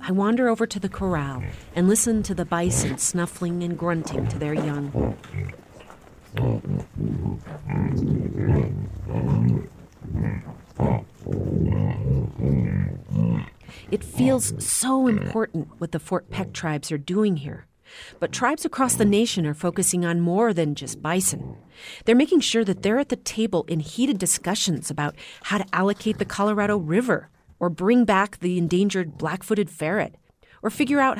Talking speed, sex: 135 wpm, female